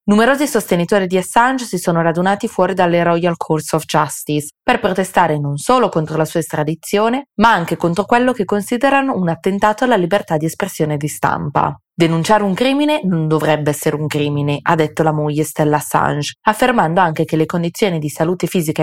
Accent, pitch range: native, 155-195 Hz